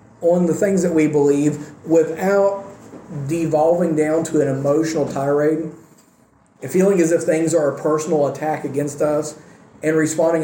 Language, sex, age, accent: English, male, 40-59, American